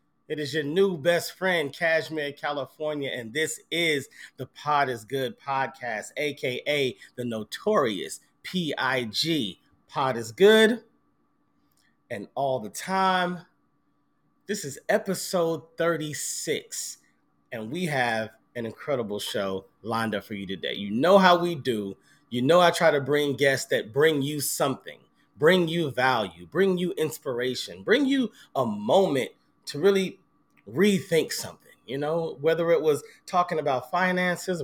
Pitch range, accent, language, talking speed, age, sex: 130-185 Hz, American, English, 140 wpm, 30-49, male